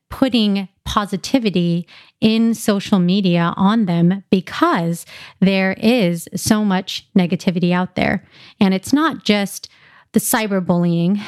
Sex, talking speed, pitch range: female, 110 wpm, 185-225 Hz